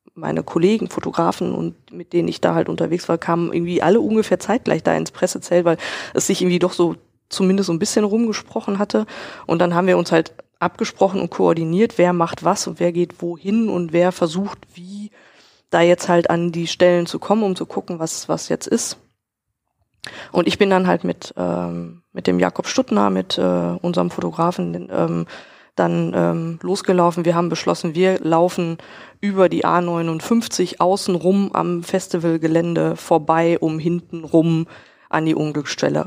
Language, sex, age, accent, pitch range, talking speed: German, female, 20-39, German, 160-185 Hz, 170 wpm